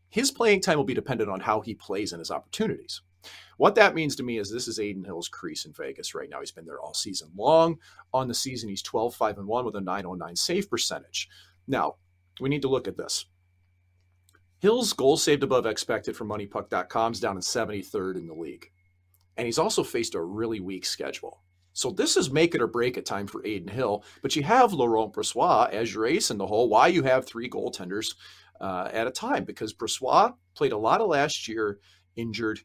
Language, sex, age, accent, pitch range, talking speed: English, male, 40-59, American, 95-130 Hz, 215 wpm